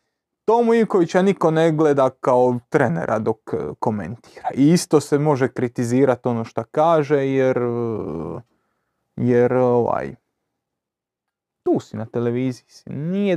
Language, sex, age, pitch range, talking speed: Croatian, male, 30-49, 125-180 Hz, 115 wpm